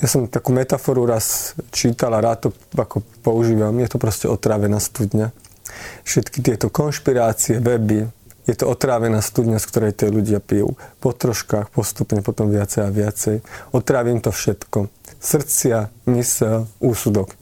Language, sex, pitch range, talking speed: Slovak, male, 110-135 Hz, 145 wpm